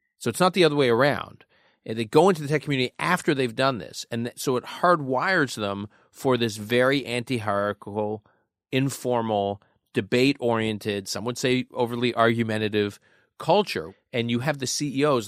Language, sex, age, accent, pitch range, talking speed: English, male, 40-59, American, 105-135 Hz, 155 wpm